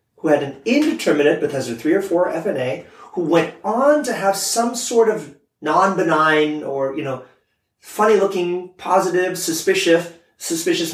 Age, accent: 30-49, American